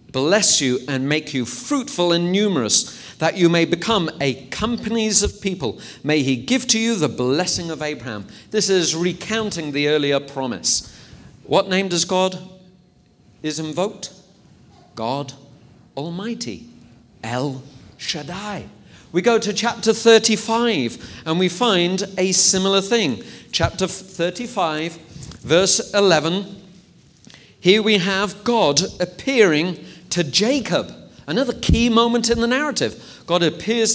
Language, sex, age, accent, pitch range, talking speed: English, male, 40-59, British, 150-210 Hz, 125 wpm